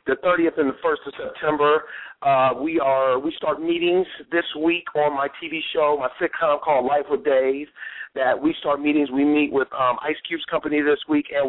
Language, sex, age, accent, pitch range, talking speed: English, male, 40-59, American, 135-185 Hz, 205 wpm